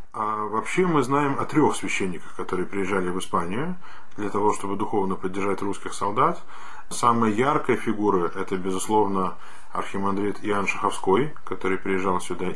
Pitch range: 95-110 Hz